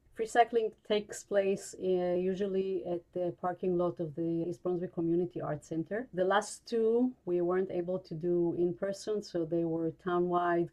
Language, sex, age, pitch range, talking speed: English, female, 30-49, 165-195 Hz, 170 wpm